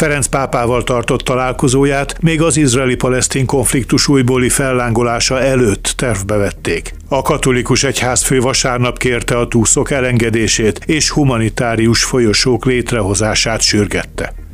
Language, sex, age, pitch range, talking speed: Hungarian, male, 60-79, 110-135 Hz, 110 wpm